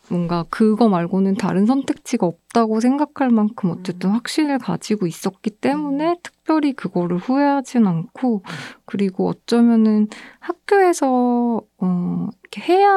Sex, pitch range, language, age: female, 185-240 Hz, Korean, 20-39